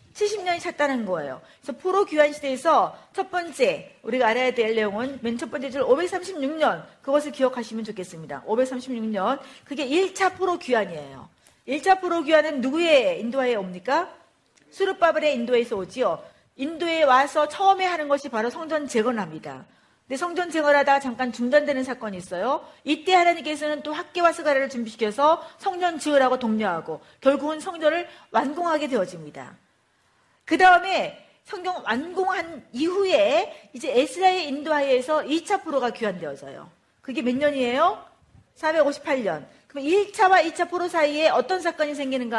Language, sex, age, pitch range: Korean, female, 40-59, 255-345 Hz